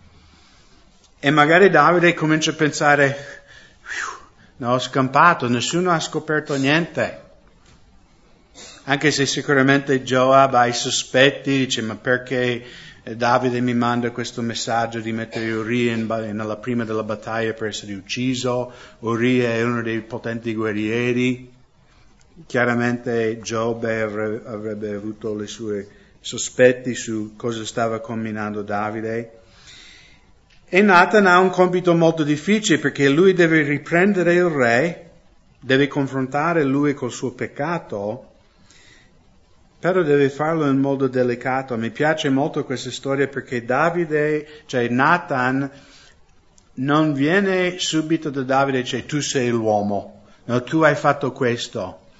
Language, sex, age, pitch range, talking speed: English, male, 50-69, 115-150 Hz, 120 wpm